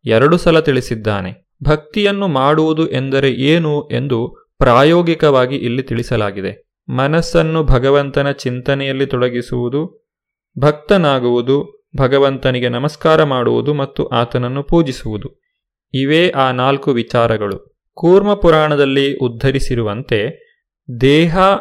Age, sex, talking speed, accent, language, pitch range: 30-49, male, 85 wpm, native, Kannada, 125-155 Hz